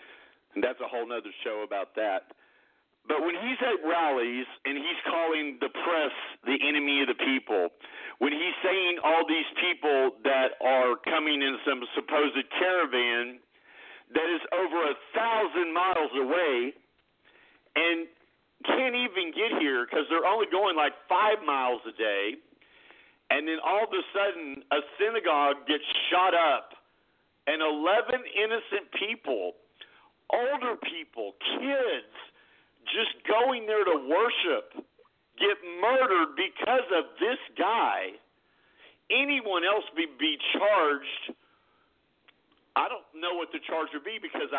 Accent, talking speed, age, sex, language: American, 135 wpm, 50-69, male, English